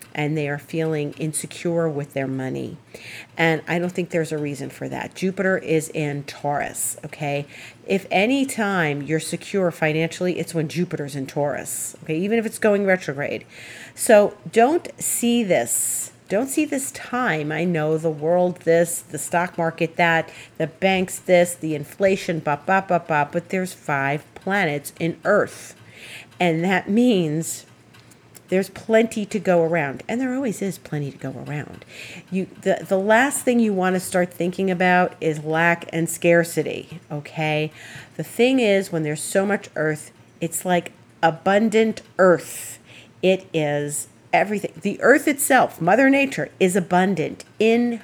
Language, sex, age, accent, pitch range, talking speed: English, female, 40-59, American, 150-190 Hz, 155 wpm